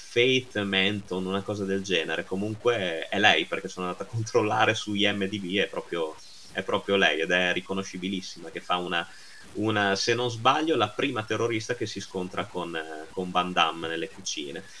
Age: 30-49